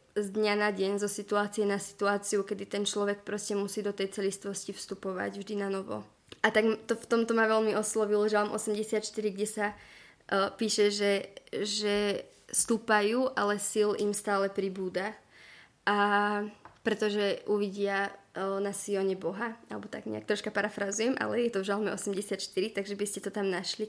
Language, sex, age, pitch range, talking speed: Czech, female, 20-39, 200-215 Hz, 165 wpm